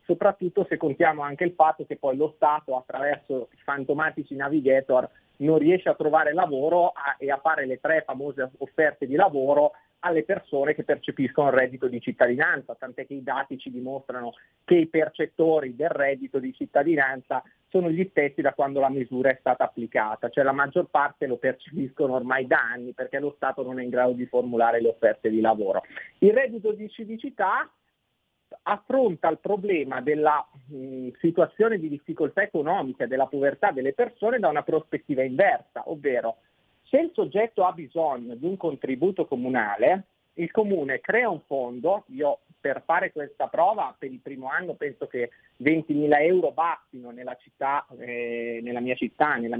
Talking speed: 170 wpm